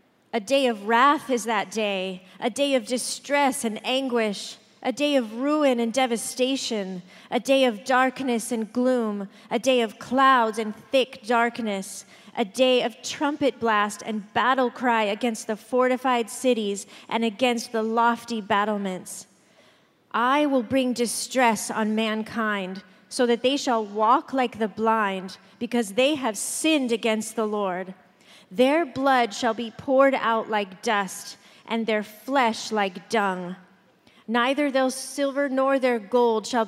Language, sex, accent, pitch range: English, female, American, 205-255 Hz